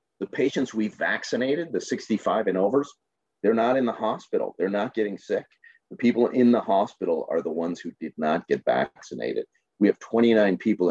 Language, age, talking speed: English, 40-59, 185 wpm